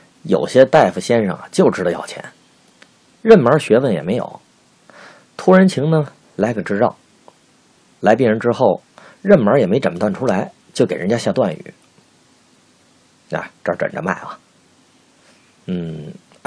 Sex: male